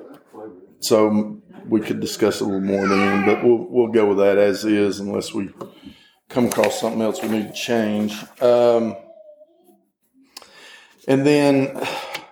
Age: 50-69